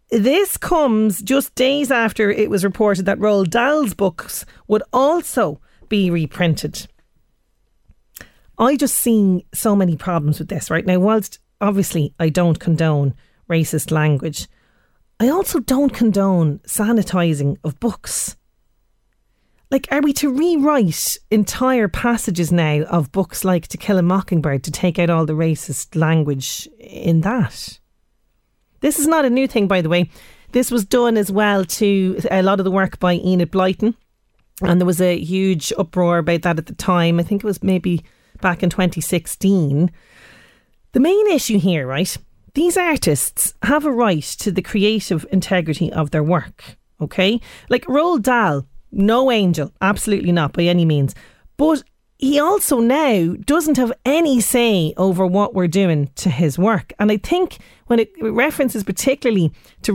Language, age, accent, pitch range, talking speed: English, 30-49, Irish, 170-235 Hz, 155 wpm